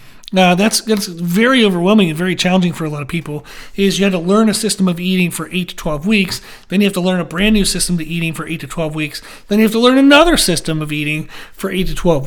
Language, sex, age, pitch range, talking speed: English, male, 40-59, 170-200 Hz, 275 wpm